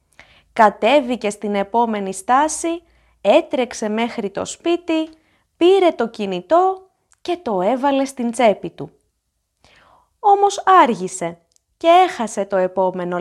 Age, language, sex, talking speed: 20-39, Greek, female, 105 wpm